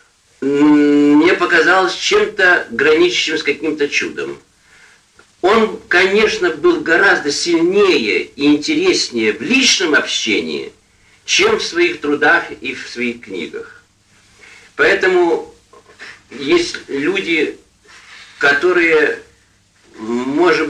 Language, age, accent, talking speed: Russian, 50-69, native, 85 wpm